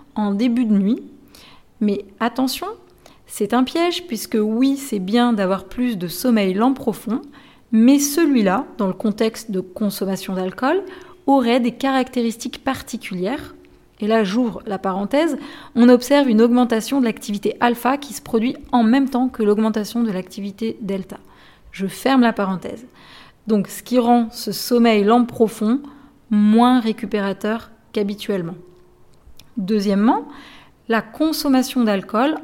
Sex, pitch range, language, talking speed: female, 210-265 Hz, French, 135 wpm